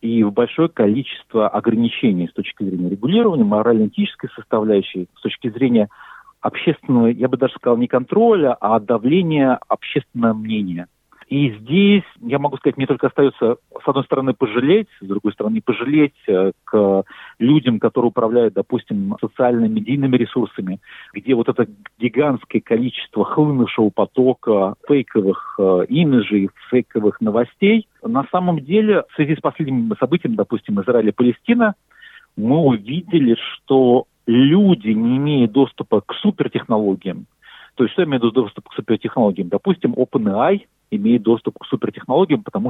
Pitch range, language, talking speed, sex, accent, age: 115-170 Hz, Russian, 130 wpm, male, native, 50-69